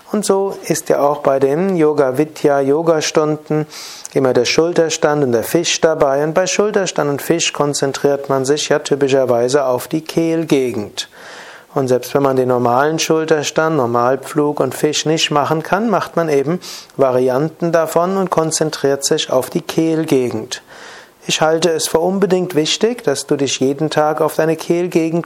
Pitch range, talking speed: 135-170 Hz, 160 wpm